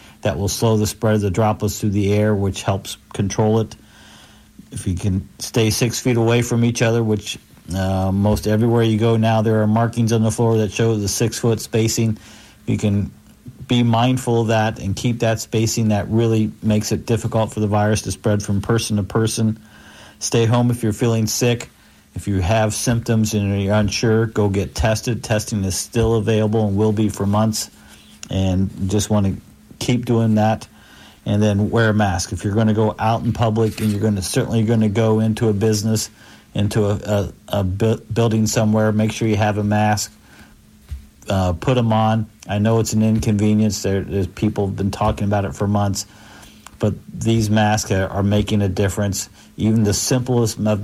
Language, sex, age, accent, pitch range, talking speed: English, male, 50-69, American, 105-115 Hz, 190 wpm